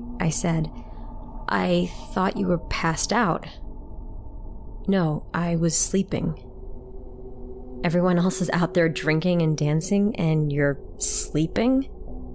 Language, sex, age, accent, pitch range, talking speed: English, female, 30-49, American, 150-195 Hz, 110 wpm